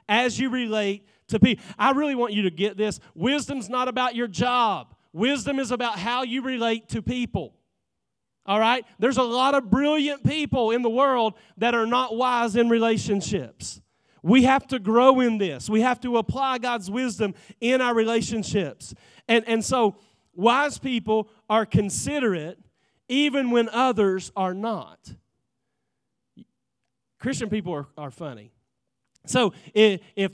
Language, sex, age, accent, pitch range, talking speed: English, male, 40-59, American, 185-245 Hz, 150 wpm